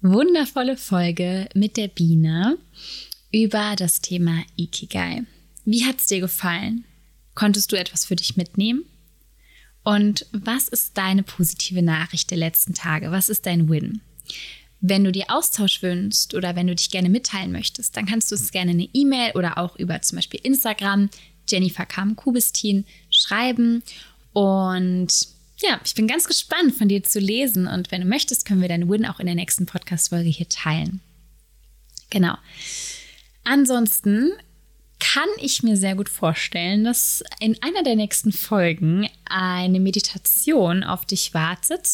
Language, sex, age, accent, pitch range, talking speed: German, female, 20-39, German, 175-220 Hz, 150 wpm